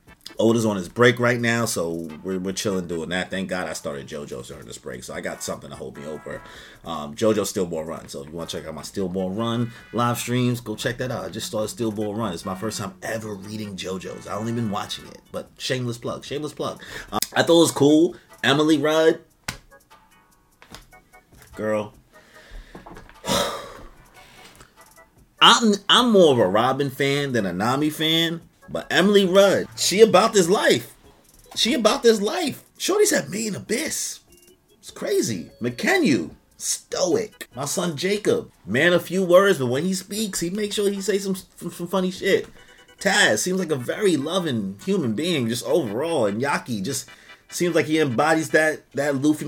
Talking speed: 185 wpm